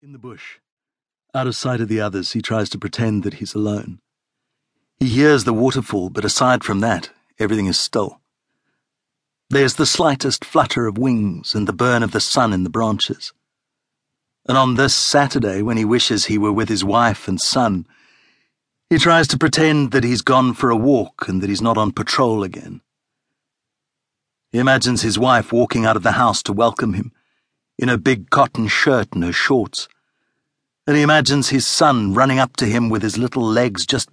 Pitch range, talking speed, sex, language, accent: 110-135 Hz, 190 wpm, male, English, British